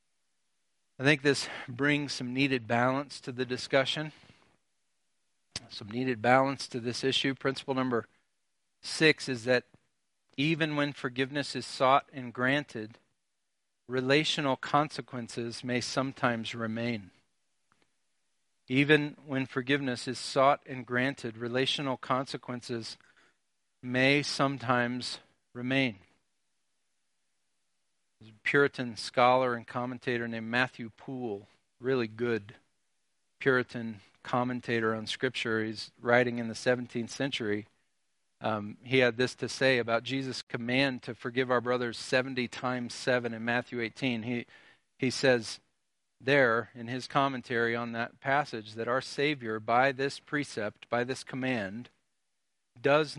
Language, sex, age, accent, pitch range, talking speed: English, male, 40-59, American, 120-135 Hz, 115 wpm